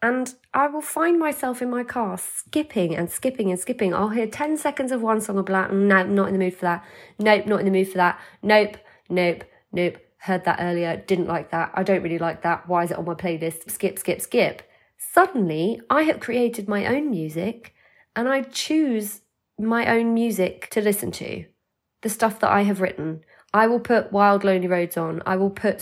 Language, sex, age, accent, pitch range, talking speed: English, female, 20-39, British, 185-240 Hz, 210 wpm